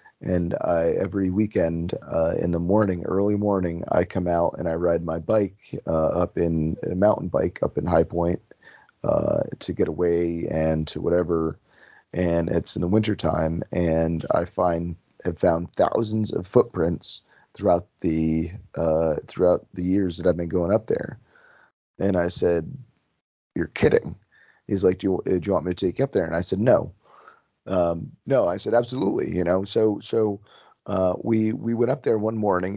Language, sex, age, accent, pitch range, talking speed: English, male, 30-49, American, 85-110 Hz, 180 wpm